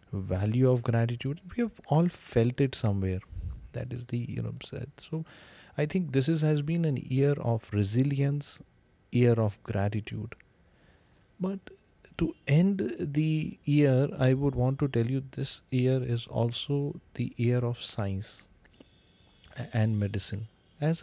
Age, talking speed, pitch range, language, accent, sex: 30-49, 145 wpm, 105-140 Hz, English, Indian, male